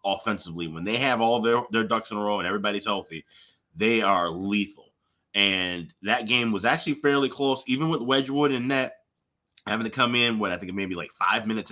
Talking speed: 215 wpm